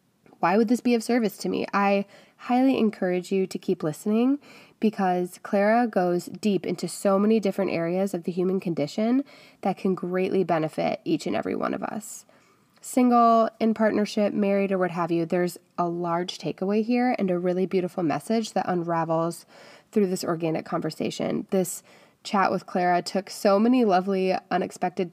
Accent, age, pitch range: American, 20-39, 185-235 Hz